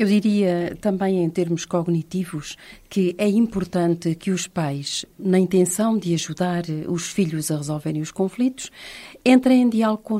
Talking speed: 155 wpm